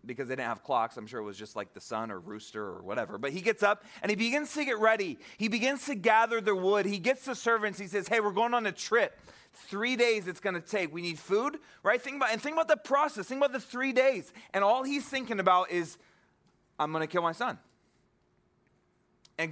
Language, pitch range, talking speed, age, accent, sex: English, 175-245 Hz, 245 wpm, 30-49, American, male